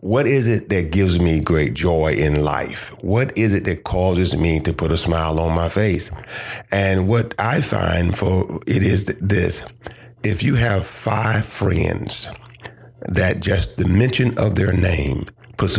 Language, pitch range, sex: English, 85-115 Hz, male